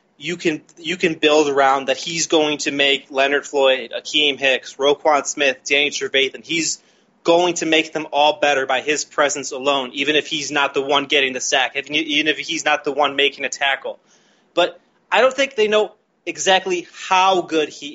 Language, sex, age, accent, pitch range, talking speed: English, male, 20-39, American, 145-175 Hz, 195 wpm